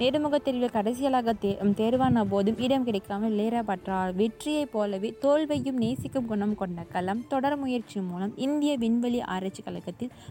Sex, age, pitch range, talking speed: female, 20-39, 200-265 Hz, 120 wpm